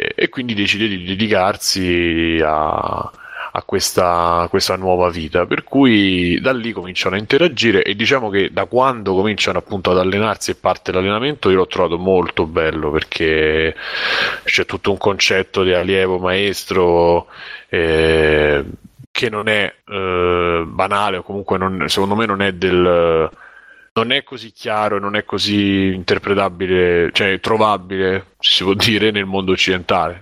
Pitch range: 90-105 Hz